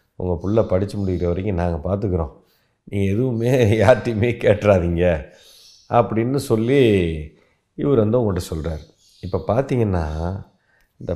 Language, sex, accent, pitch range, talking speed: Tamil, male, native, 90-135 Hz, 110 wpm